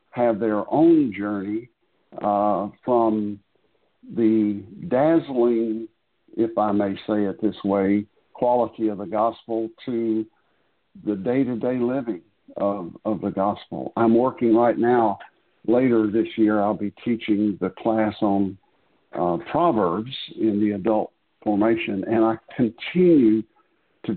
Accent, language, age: American, English, 60-79